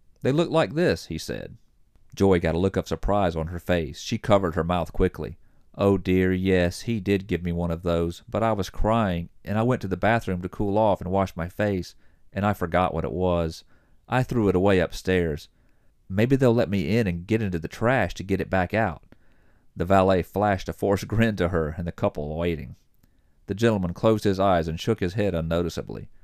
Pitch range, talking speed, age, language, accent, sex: 85-115 Hz, 215 wpm, 40-59, English, American, male